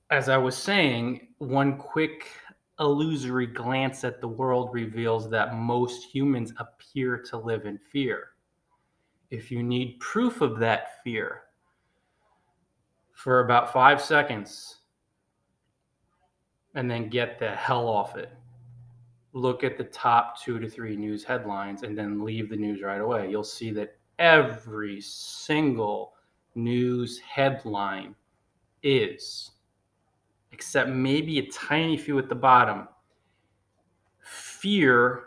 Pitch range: 115-135 Hz